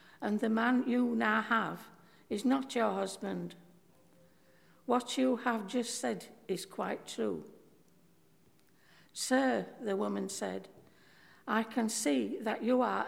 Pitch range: 215-255 Hz